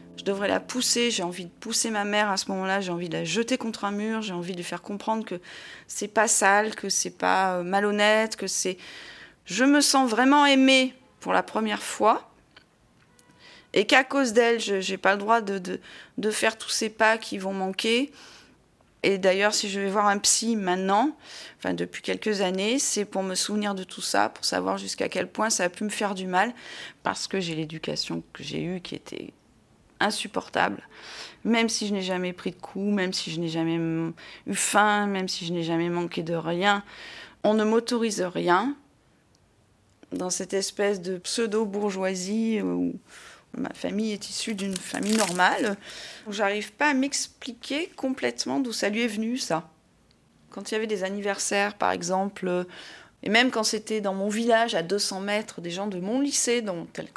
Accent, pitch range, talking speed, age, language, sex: French, 185-225 Hz, 190 wpm, 30-49, French, female